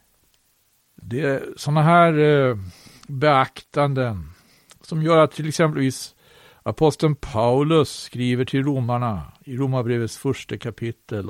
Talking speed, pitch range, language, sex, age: 105 wpm, 115-150 Hz, Swedish, male, 60-79